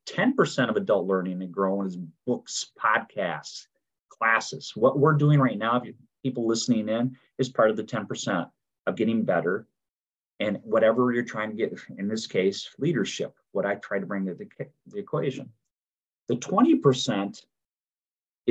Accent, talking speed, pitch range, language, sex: American, 160 wpm, 100-135 Hz, English, male